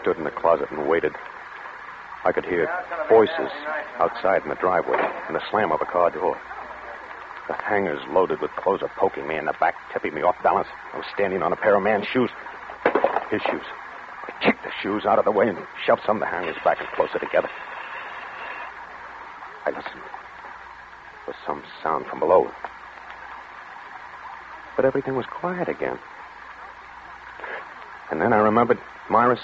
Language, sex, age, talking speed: English, male, 60-79, 170 wpm